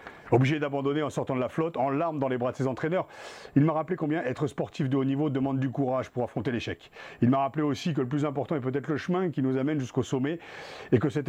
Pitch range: 130-170 Hz